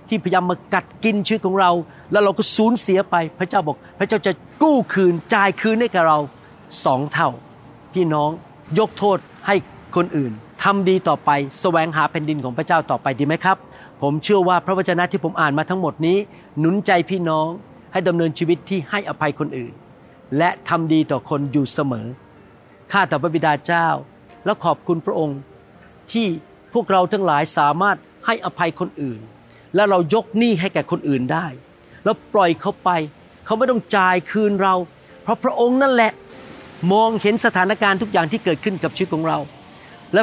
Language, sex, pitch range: Thai, male, 155-200 Hz